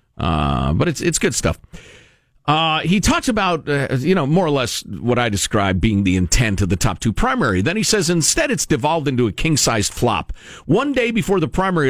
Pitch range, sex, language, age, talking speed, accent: 115-165 Hz, male, English, 50-69, 210 wpm, American